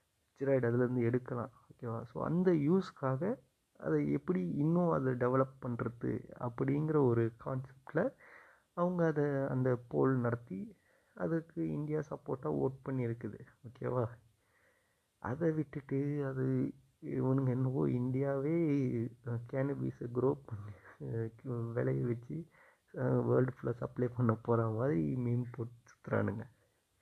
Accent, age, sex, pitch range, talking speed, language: native, 30-49, male, 115-140 Hz, 110 wpm, Tamil